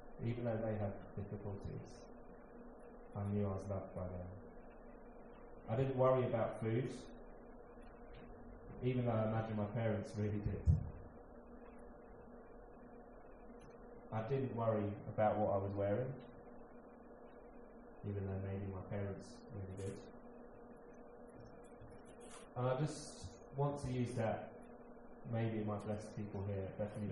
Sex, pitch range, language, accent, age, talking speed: male, 95-115 Hz, English, British, 20-39, 120 wpm